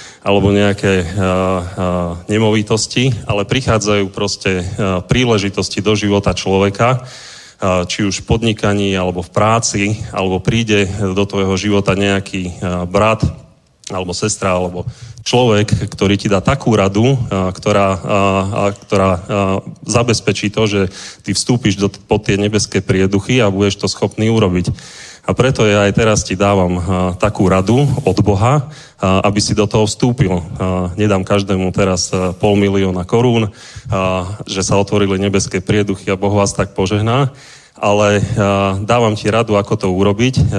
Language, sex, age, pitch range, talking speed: Czech, male, 30-49, 95-110 Hz, 140 wpm